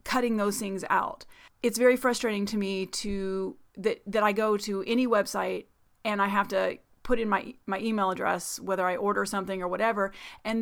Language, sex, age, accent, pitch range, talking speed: English, female, 30-49, American, 195-235 Hz, 190 wpm